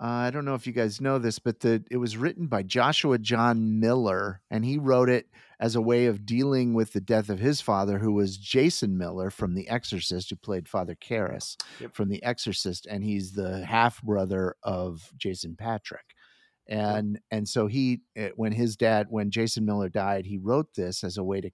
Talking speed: 200 wpm